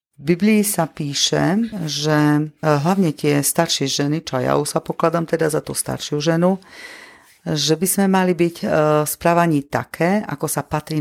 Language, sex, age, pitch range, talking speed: Slovak, female, 40-59, 145-170 Hz, 160 wpm